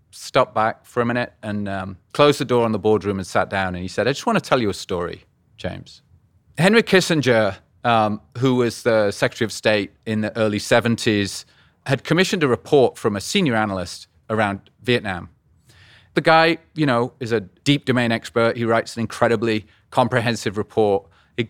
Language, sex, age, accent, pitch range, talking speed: English, male, 30-49, British, 110-150 Hz, 185 wpm